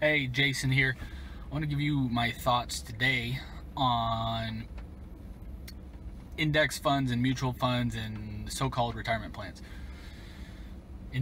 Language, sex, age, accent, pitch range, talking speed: English, male, 20-39, American, 110-135 Hz, 120 wpm